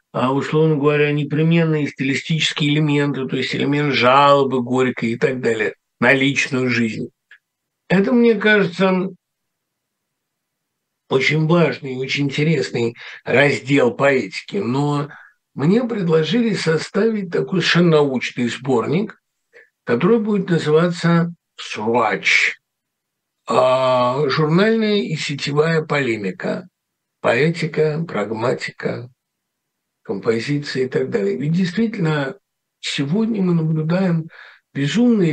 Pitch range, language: 130-170 Hz, Russian